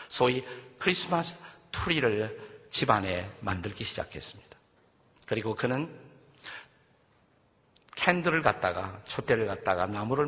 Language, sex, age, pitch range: Korean, male, 50-69, 110-150 Hz